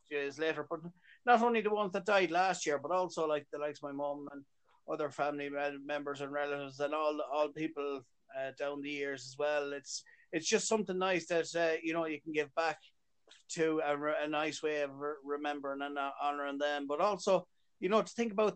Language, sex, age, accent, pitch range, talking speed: English, male, 30-49, Irish, 145-165 Hz, 220 wpm